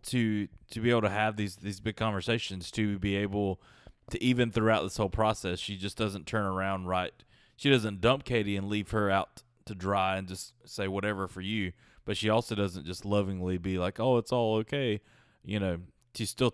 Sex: male